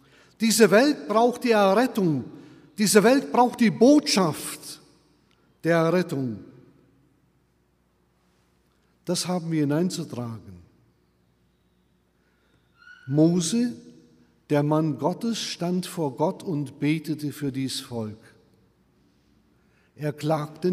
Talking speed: 85 wpm